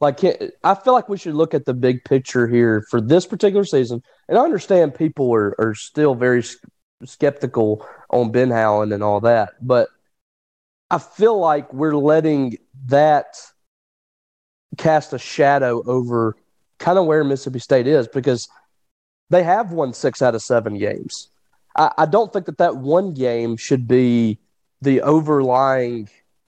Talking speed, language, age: 155 wpm, English, 30-49